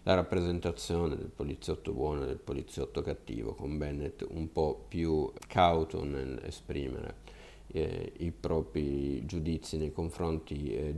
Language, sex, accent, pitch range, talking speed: Italian, male, native, 75-85 Hz, 130 wpm